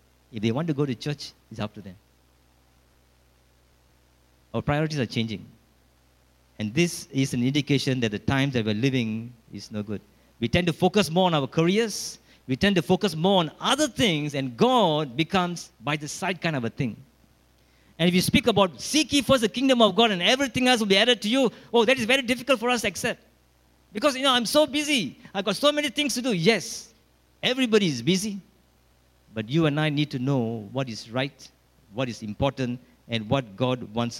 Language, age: English, 50-69